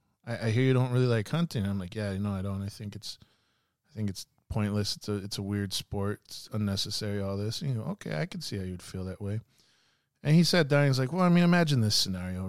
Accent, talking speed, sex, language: American, 275 wpm, male, English